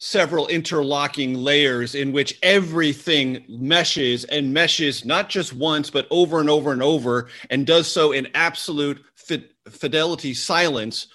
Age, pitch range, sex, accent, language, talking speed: 40-59, 125-150 Hz, male, American, English, 135 wpm